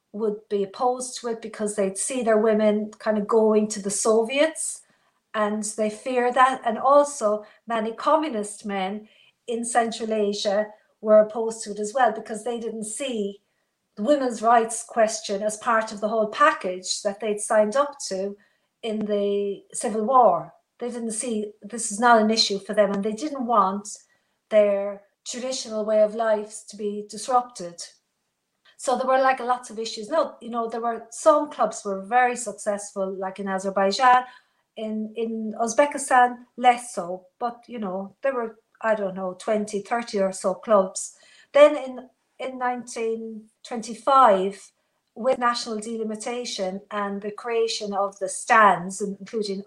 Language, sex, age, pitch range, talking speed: English, female, 50-69, 205-240 Hz, 160 wpm